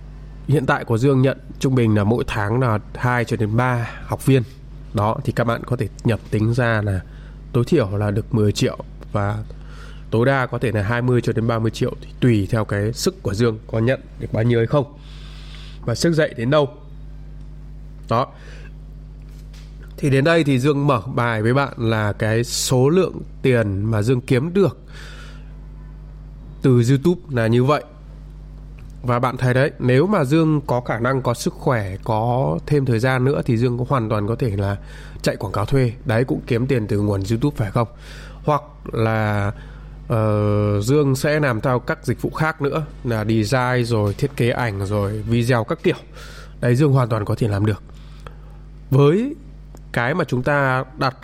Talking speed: 185 wpm